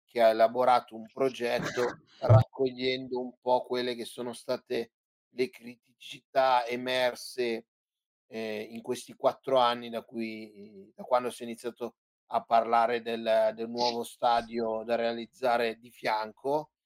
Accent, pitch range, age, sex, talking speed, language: native, 115-130 Hz, 30-49, male, 130 wpm, Italian